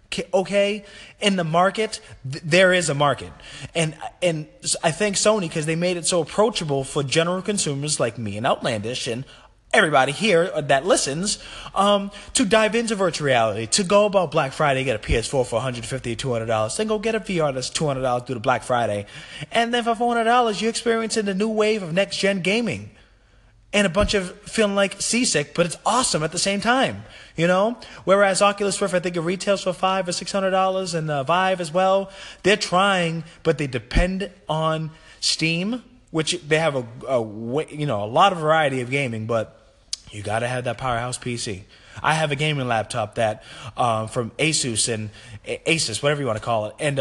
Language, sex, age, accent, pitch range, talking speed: English, male, 20-39, American, 125-195 Hz, 195 wpm